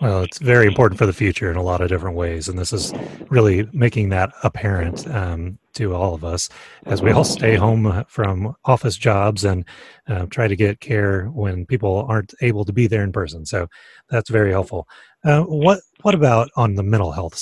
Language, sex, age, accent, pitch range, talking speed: English, male, 30-49, American, 95-115 Hz, 205 wpm